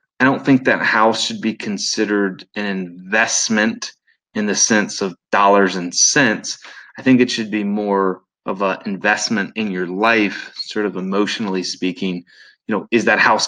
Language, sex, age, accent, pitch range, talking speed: English, male, 20-39, American, 100-120 Hz, 170 wpm